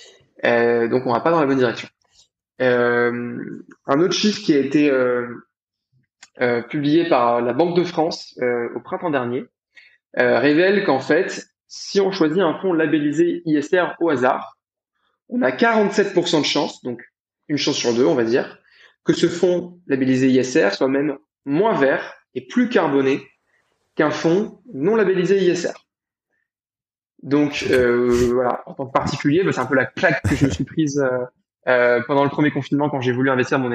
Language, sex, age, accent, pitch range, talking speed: French, male, 20-39, French, 125-160 Hz, 180 wpm